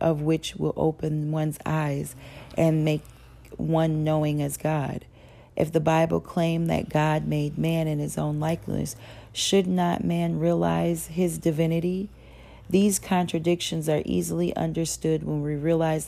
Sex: female